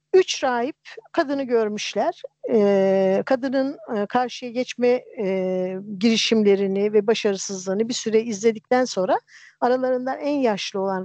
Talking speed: 110 wpm